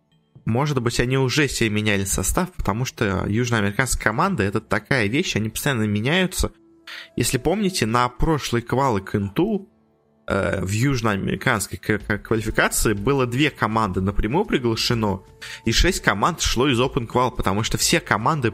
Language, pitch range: Russian, 105-130 Hz